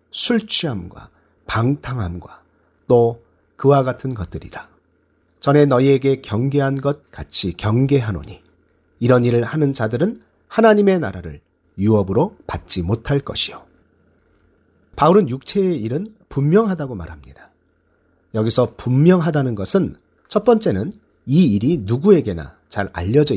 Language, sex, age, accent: Korean, male, 40-59, native